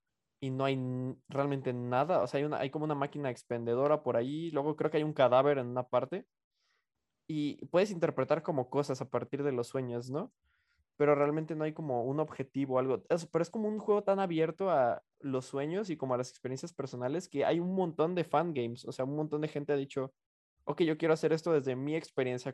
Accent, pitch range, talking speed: Mexican, 125-155 Hz, 225 wpm